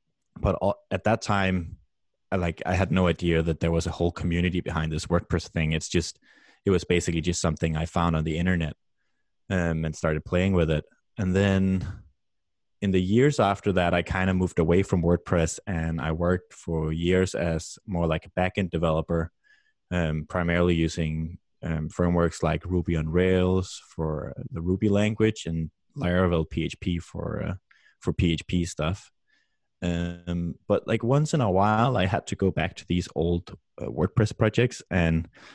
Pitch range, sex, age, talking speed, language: 80-95 Hz, male, 20-39, 175 wpm, English